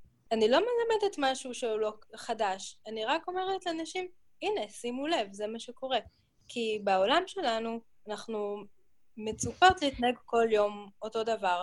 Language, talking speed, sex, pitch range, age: Hebrew, 140 wpm, female, 195-240 Hz, 20-39